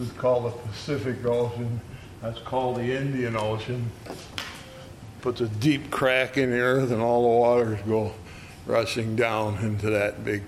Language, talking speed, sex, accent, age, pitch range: English, 155 wpm, male, American, 60-79, 105-135 Hz